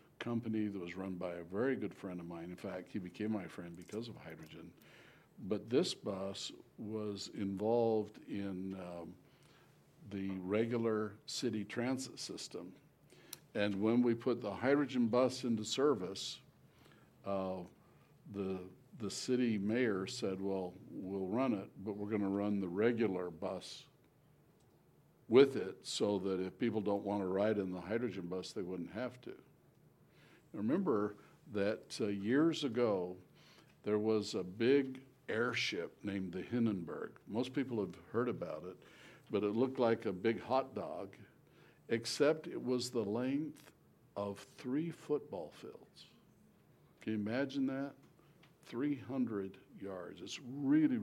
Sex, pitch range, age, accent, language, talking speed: male, 95-125 Hz, 60-79, American, English, 145 wpm